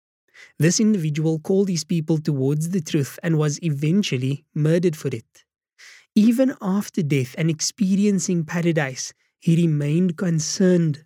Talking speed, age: 125 wpm, 20-39